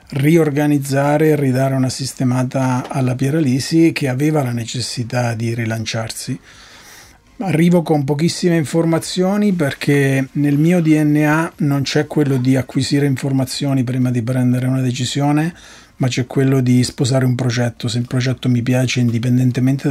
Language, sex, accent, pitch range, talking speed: Italian, male, native, 125-150 Hz, 135 wpm